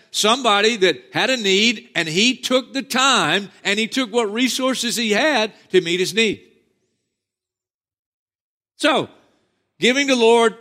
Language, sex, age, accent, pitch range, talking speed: English, male, 50-69, American, 175-230 Hz, 140 wpm